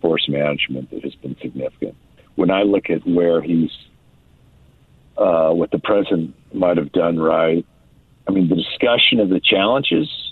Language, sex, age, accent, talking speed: English, male, 50-69, American, 155 wpm